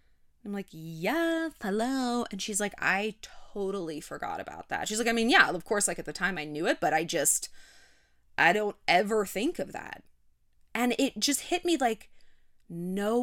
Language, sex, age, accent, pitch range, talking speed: English, female, 20-39, American, 190-285 Hz, 190 wpm